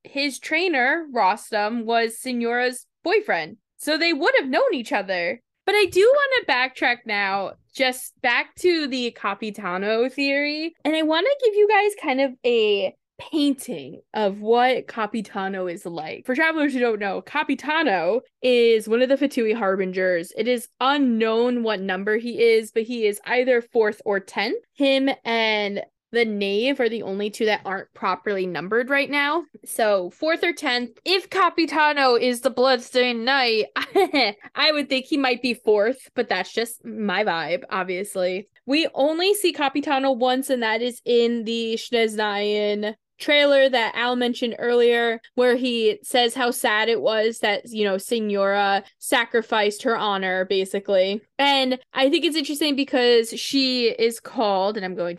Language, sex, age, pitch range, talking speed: English, female, 20-39, 210-275 Hz, 160 wpm